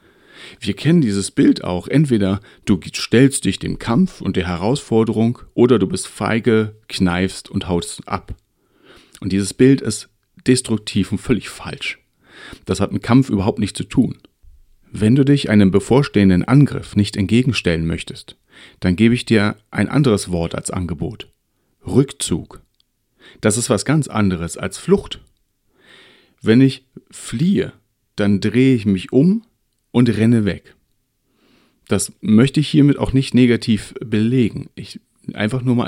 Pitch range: 100-130 Hz